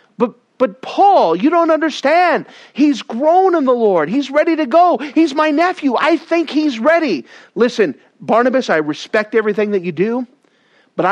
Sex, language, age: male, English, 40-59